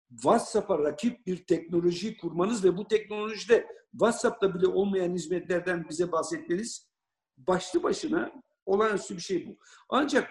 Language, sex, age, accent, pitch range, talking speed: Turkish, male, 60-79, native, 175-220 Hz, 120 wpm